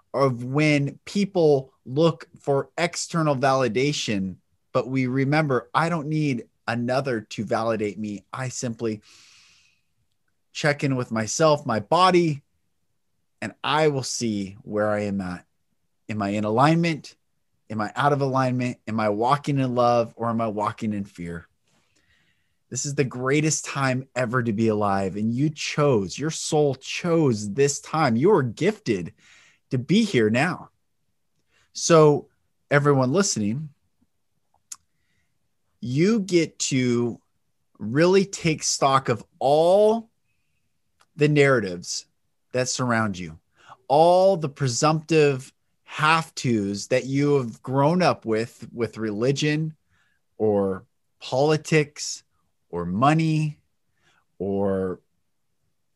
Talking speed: 120 wpm